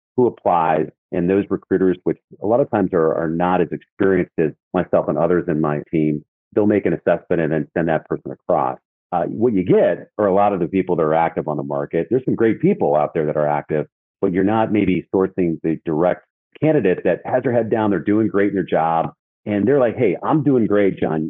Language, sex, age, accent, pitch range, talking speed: English, male, 40-59, American, 80-105 Hz, 235 wpm